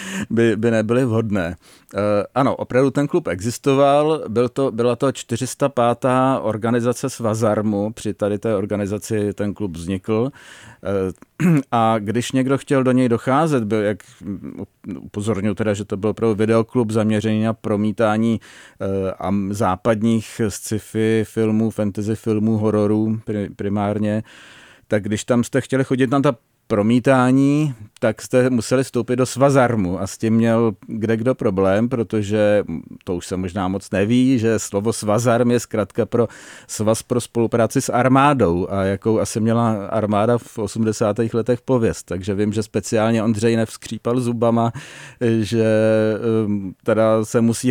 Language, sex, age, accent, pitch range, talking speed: Czech, male, 40-59, native, 105-125 Hz, 140 wpm